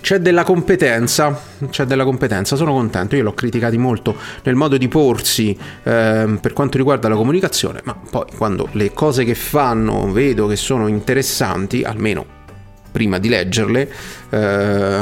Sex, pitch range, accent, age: male, 110-140 Hz, native, 30-49